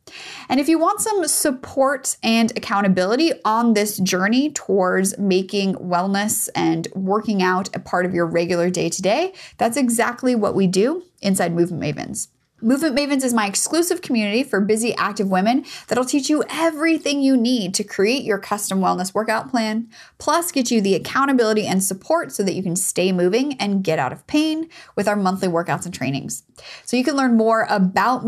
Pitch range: 190-260 Hz